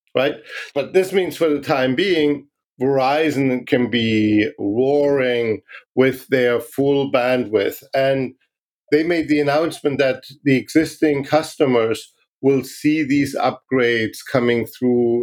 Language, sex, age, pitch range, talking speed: English, male, 50-69, 120-145 Hz, 120 wpm